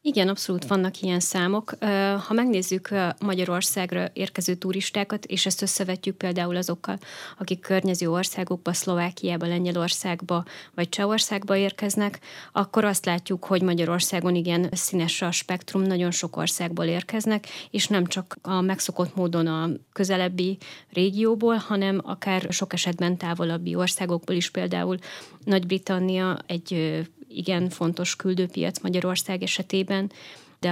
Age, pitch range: 30-49, 170-190 Hz